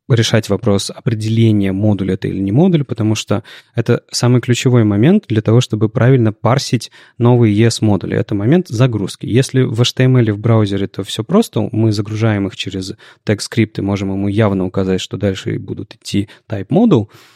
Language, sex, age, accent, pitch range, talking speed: Russian, male, 30-49, native, 100-130 Hz, 170 wpm